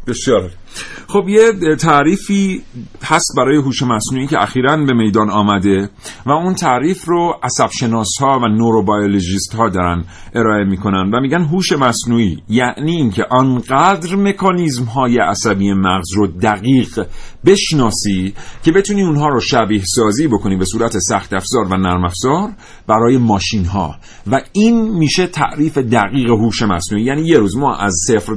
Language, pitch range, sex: Persian, 105-155 Hz, male